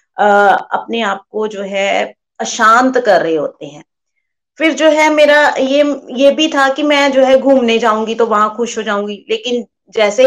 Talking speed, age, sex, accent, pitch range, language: 180 wpm, 30-49, female, native, 210-265 Hz, Hindi